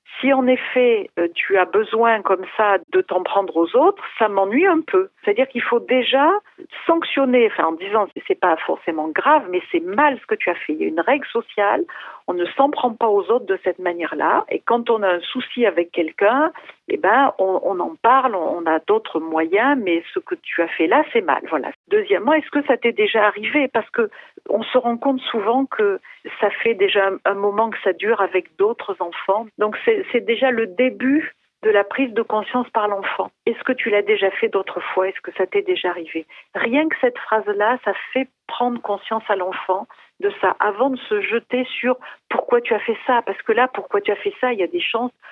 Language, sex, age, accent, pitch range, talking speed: French, female, 50-69, French, 190-270 Hz, 230 wpm